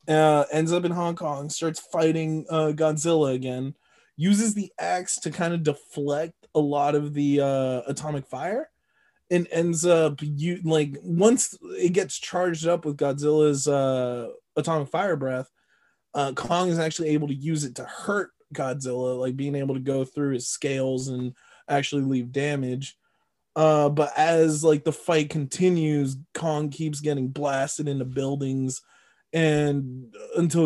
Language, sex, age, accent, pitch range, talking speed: English, male, 20-39, American, 140-175 Hz, 155 wpm